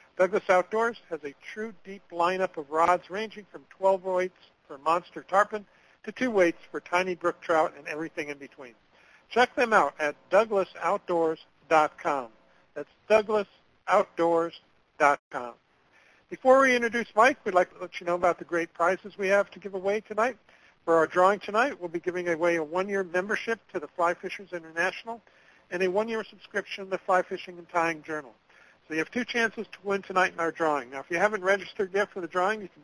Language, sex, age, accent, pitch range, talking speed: English, male, 60-79, American, 160-205 Hz, 190 wpm